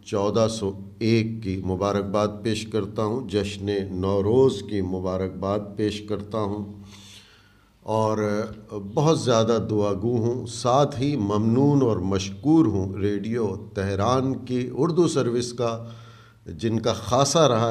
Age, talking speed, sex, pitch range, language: 50-69, 125 wpm, male, 100-115 Hz, Urdu